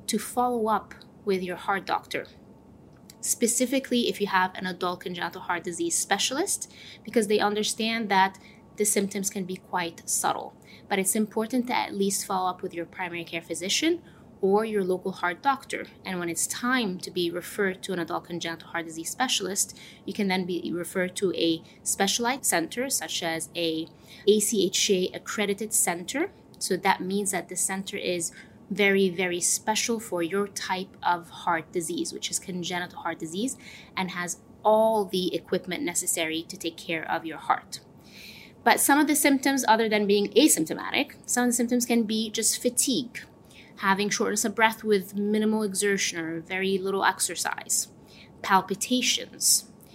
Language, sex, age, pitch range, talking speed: English, female, 20-39, 180-220 Hz, 165 wpm